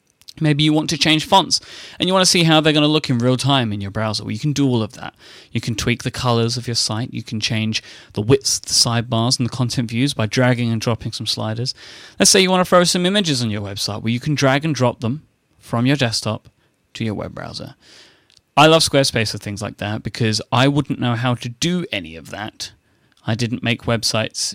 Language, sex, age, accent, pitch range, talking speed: English, male, 30-49, British, 110-140 Hz, 245 wpm